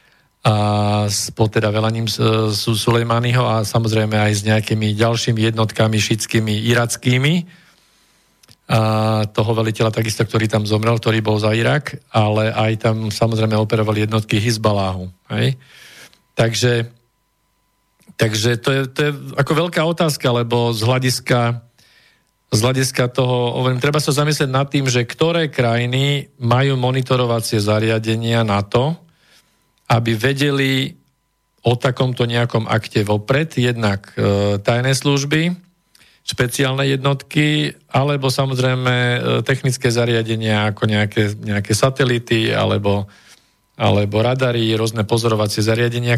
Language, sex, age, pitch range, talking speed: Slovak, male, 40-59, 110-135 Hz, 110 wpm